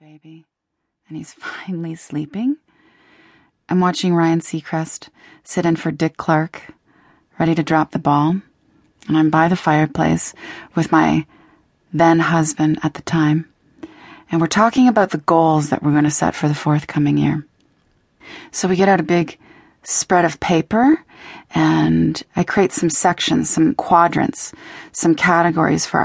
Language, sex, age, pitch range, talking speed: English, female, 30-49, 155-190 Hz, 145 wpm